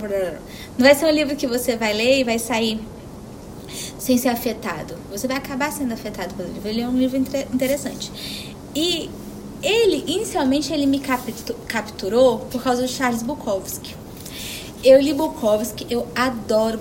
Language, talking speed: Portuguese, 155 wpm